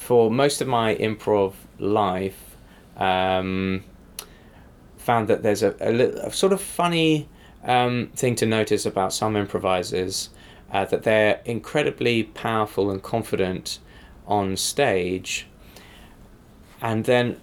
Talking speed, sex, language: 115 wpm, male, English